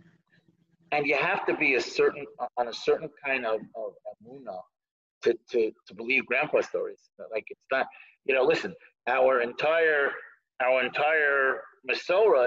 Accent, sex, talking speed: American, male, 145 wpm